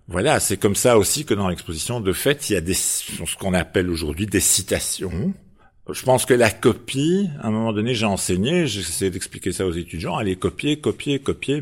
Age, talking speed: 50-69, 210 wpm